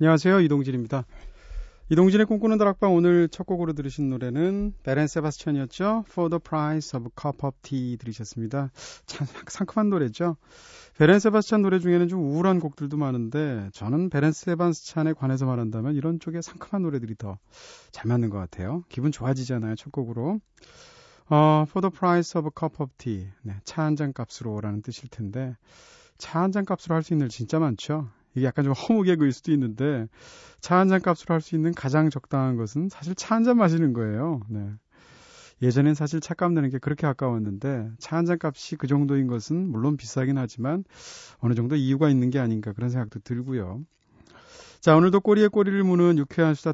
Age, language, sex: 30-49, Korean, male